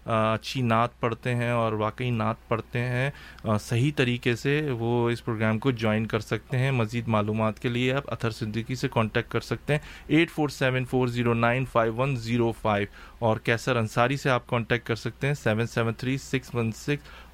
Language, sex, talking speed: English, male, 150 wpm